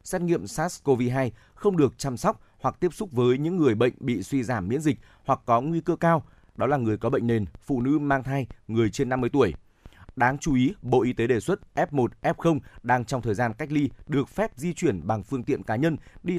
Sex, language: male, Vietnamese